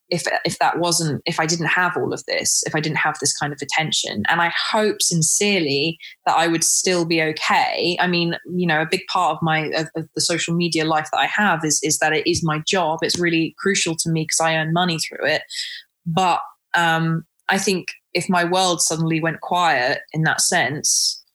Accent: British